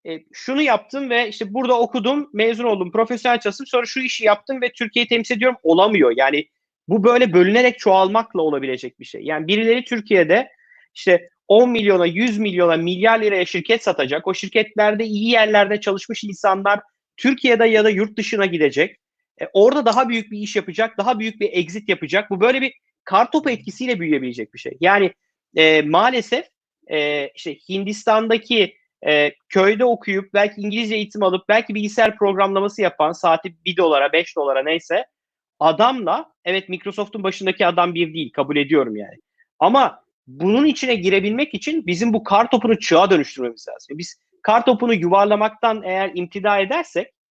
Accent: native